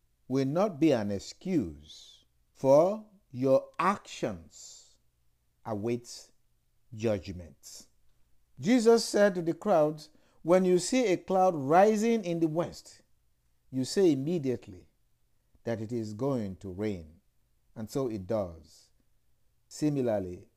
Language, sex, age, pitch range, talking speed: English, male, 50-69, 100-160 Hz, 110 wpm